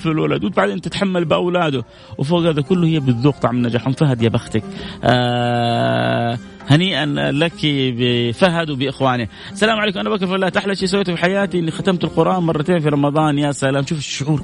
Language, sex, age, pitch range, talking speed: Arabic, male, 30-49, 130-170 Hz, 170 wpm